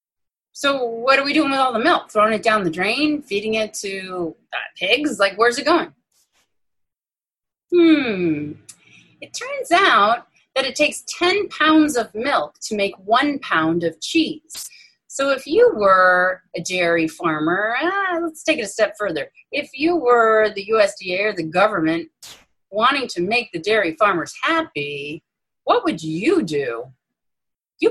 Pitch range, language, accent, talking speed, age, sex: 185-305 Hz, English, American, 160 wpm, 30-49, female